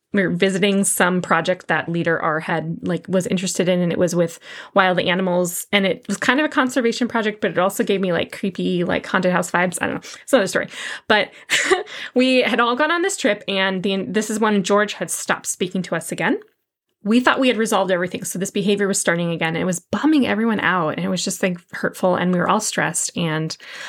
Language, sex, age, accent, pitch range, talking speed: English, female, 20-39, American, 175-205 Hz, 235 wpm